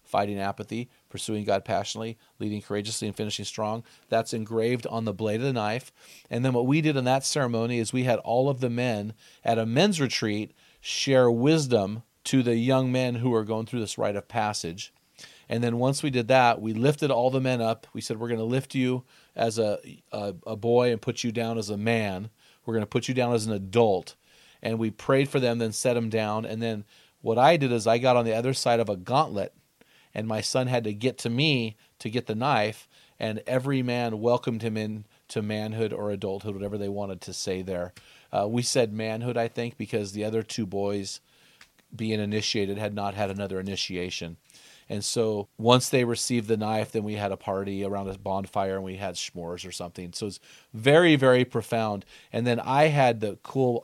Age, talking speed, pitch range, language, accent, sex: 40-59, 215 wpm, 105-125 Hz, English, American, male